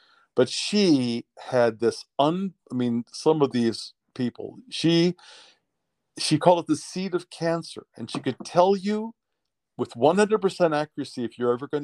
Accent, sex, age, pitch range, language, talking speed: American, male, 50-69, 125-160 Hz, English, 155 wpm